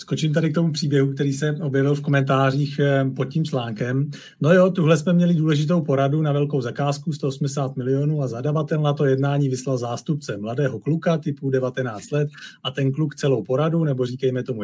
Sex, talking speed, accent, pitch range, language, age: male, 185 wpm, native, 130-150 Hz, Czech, 40-59